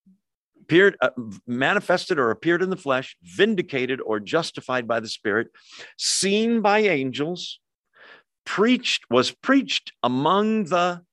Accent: American